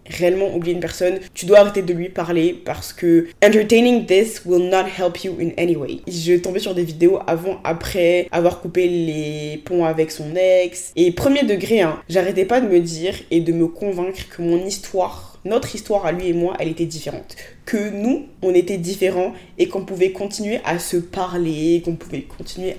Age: 20-39